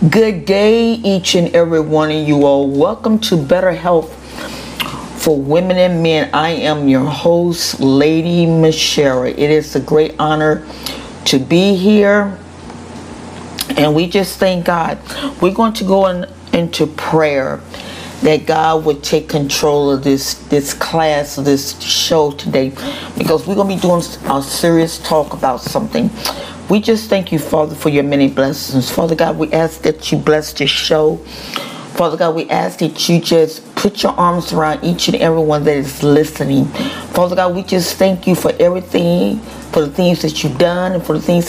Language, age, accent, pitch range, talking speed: English, 40-59, American, 150-180 Hz, 175 wpm